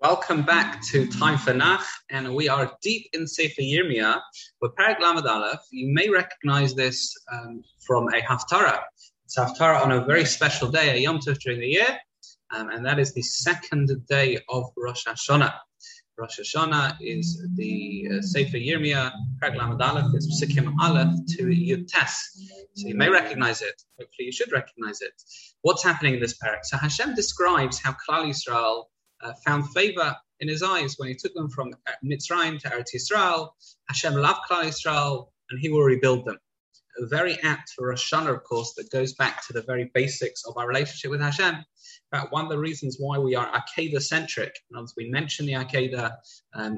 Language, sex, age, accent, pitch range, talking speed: English, male, 20-39, British, 130-165 Hz, 185 wpm